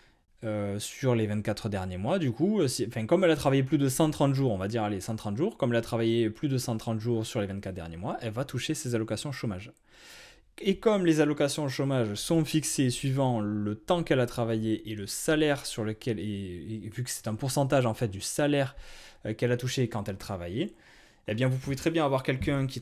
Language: French